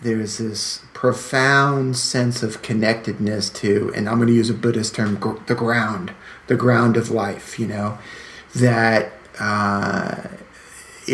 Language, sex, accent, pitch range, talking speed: English, male, American, 105-120 Hz, 140 wpm